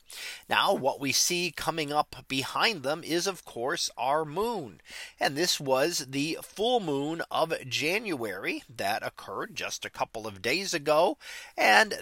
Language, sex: English, male